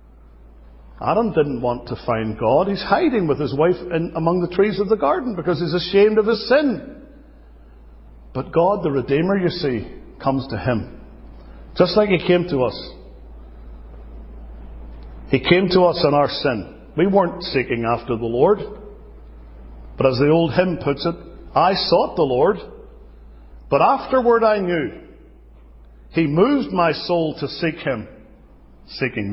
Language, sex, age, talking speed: English, male, 50-69, 150 wpm